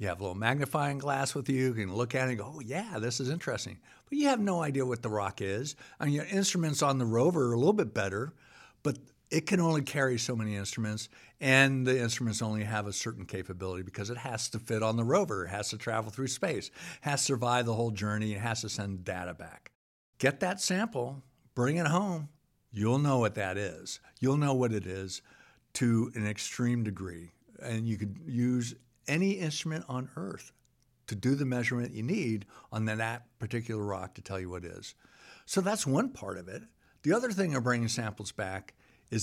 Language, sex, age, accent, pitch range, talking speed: English, male, 60-79, American, 110-140 Hz, 215 wpm